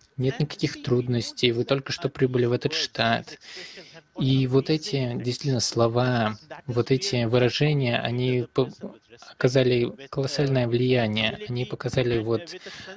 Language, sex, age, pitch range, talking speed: Russian, male, 20-39, 115-135 Hz, 120 wpm